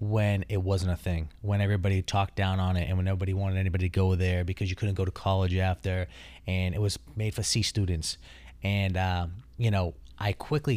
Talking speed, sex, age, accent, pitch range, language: 215 wpm, male, 30-49, American, 90-105 Hz, English